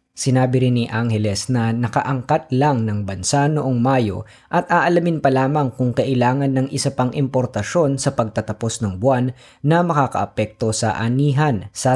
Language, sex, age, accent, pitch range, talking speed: Filipino, female, 20-39, native, 110-145 Hz, 150 wpm